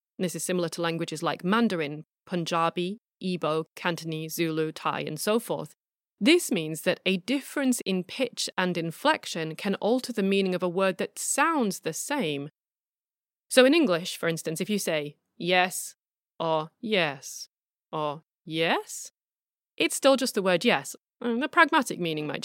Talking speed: 155 wpm